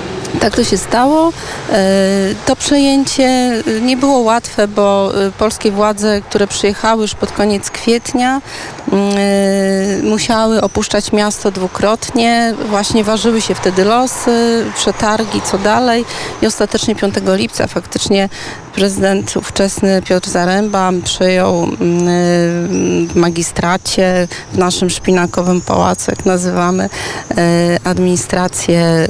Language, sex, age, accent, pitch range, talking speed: Polish, female, 40-59, native, 180-220 Hz, 100 wpm